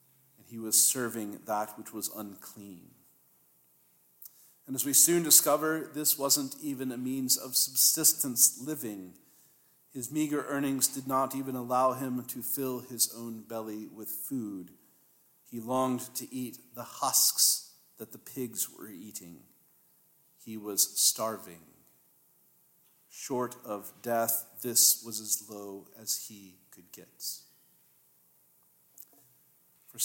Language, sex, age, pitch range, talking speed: English, male, 50-69, 100-130 Hz, 120 wpm